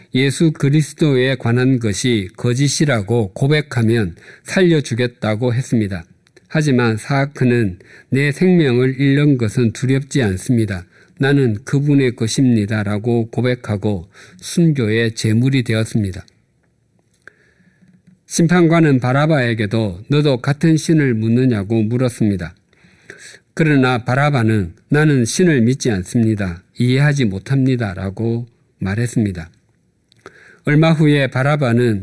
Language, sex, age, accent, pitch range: Korean, male, 50-69, native, 115-145 Hz